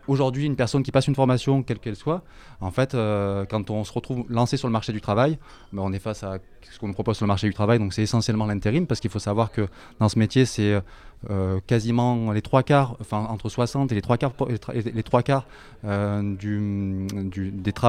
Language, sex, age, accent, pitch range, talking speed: French, male, 20-39, French, 100-120 Hz, 210 wpm